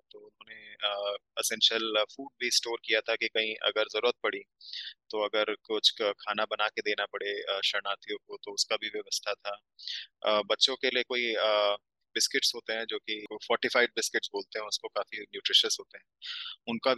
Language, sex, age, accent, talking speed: Hindi, male, 20-39, native, 170 wpm